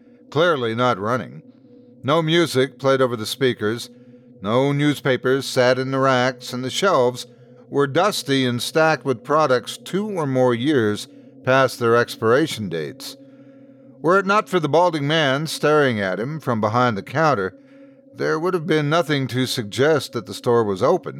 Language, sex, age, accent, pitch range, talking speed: English, male, 50-69, American, 125-185 Hz, 165 wpm